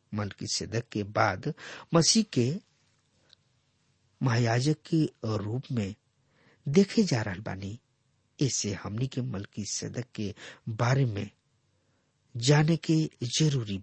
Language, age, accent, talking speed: English, 60-79, Indian, 105 wpm